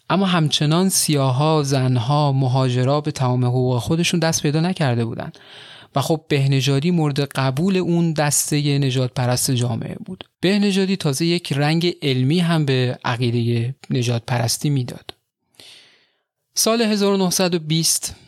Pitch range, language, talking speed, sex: 130-160 Hz, Persian, 120 wpm, male